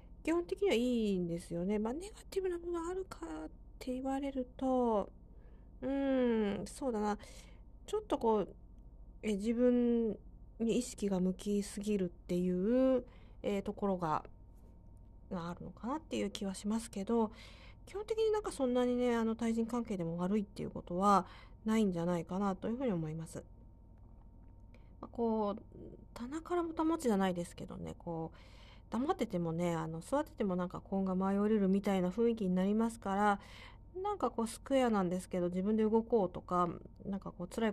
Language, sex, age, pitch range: Japanese, female, 40-59, 180-240 Hz